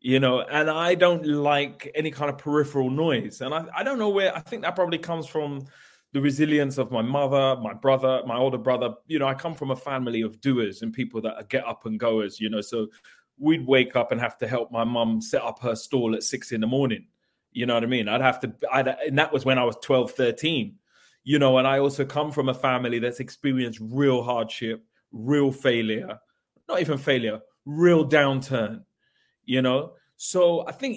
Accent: British